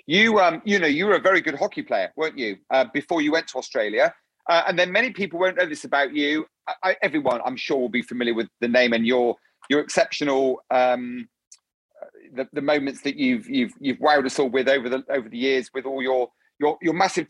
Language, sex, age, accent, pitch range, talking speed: English, male, 40-59, British, 145-210 Hz, 230 wpm